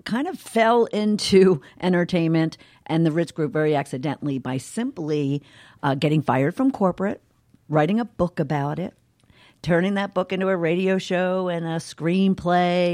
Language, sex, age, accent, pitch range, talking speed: English, female, 50-69, American, 140-180 Hz, 155 wpm